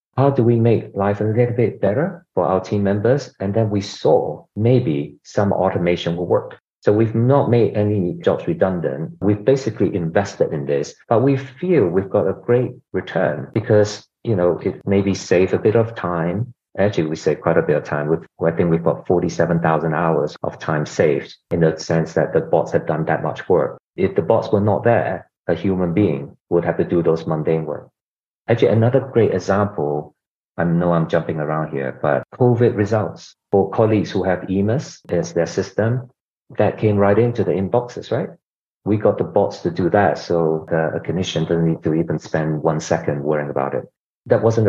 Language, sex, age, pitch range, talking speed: English, male, 50-69, 85-110 Hz, 195 wpm